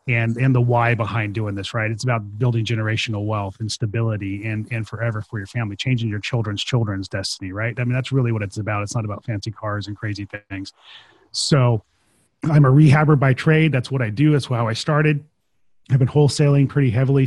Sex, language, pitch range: male, English, 105-130 Hz